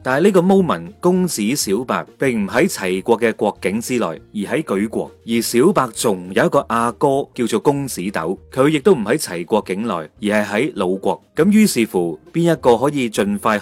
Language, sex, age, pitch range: Chinese, male, 30-49, 95-150 Hz